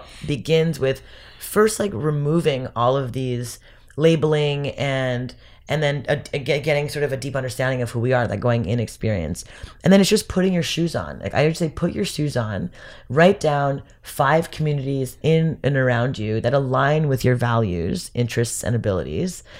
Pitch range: 125-155 Hz